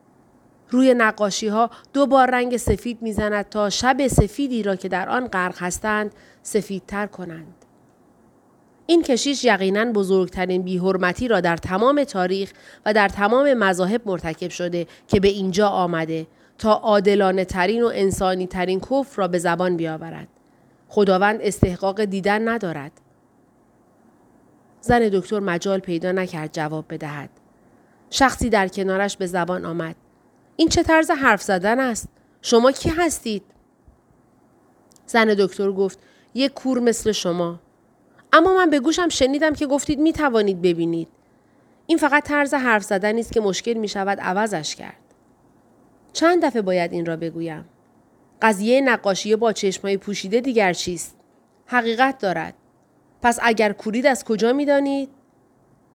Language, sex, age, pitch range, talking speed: Persian, female, 30-49, 185-245 Hz, 135 wpm